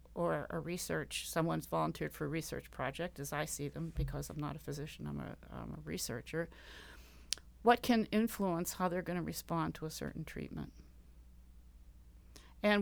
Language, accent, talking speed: English, American, 170 wpm